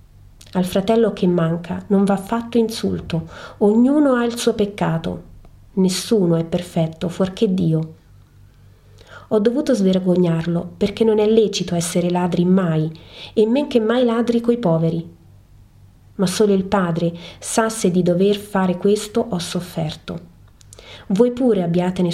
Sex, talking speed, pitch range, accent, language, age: female, 135 wpm, 160-210 Hz, native, Italian, 30-49